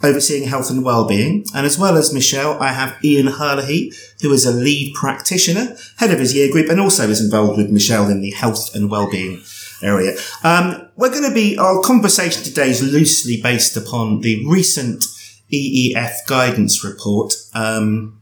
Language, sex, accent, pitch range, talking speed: English, male, British, 120-165 Hz, 175 wpm